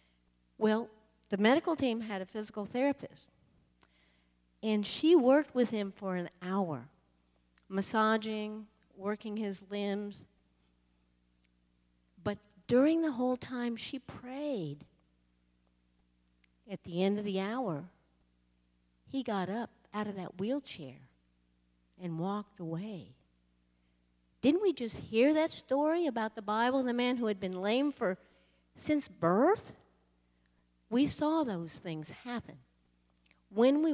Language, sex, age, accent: English, female, 50-69, American